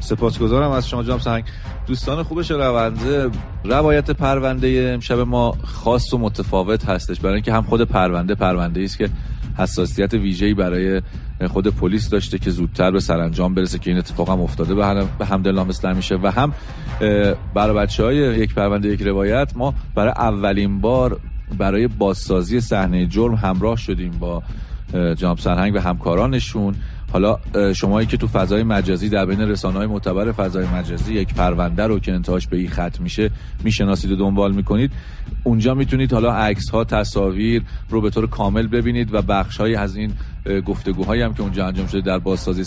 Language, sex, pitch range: Persian, male, 95-115 Hz